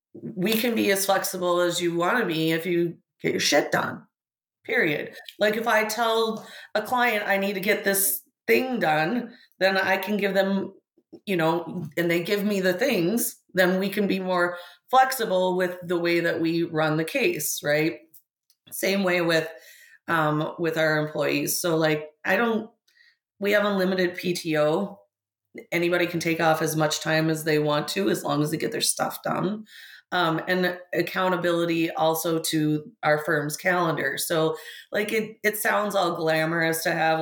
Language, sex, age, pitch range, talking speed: English, female, 30-49, 155-190 Hz, 175 wpm